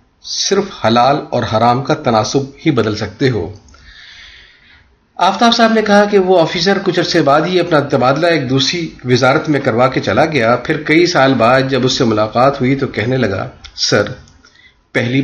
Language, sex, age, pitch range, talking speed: Urdu, male, 40-59, 120-155 Hz, 175 wpm